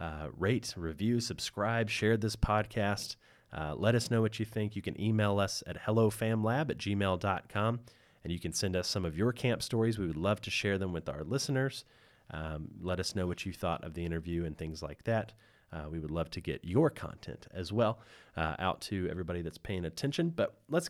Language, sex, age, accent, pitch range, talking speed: English, male, 30-49, American, 85-115 Hz, 215 wpm